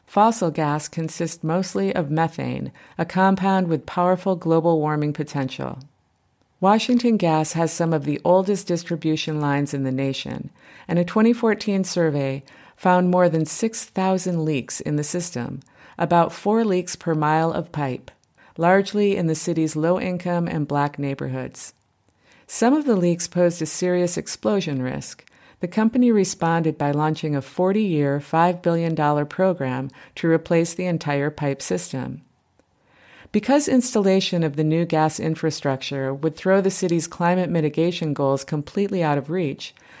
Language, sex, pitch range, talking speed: English, female, 150-185 Hz, 145 wpm